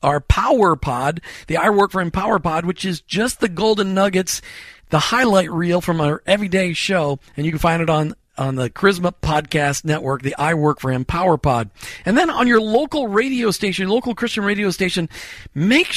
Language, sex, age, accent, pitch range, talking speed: English, male, 50-69, American, 155-205 Hz, 190 wpm